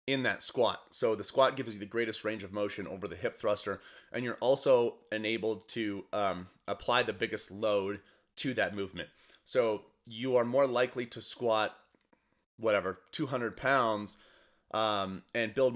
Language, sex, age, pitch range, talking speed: English, male, 30-49, 95-120 Hz, 165 wpm